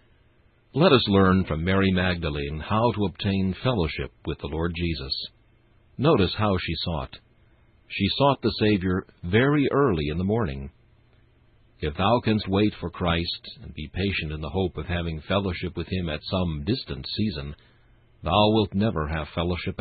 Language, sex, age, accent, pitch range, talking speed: English, male, 60-79, American, 85-120 Hz, 160 wpm